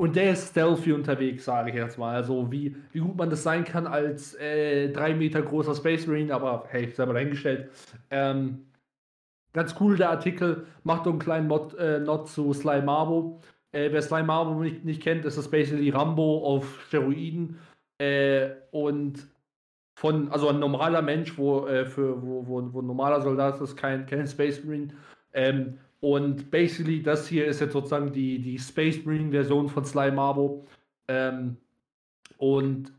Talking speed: 170 wpm